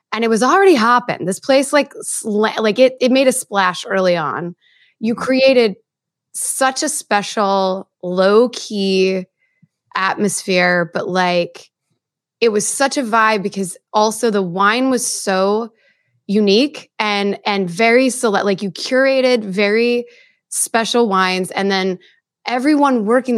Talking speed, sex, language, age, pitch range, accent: 135 wpm, female, English, 20-39, 190-260 Hz, American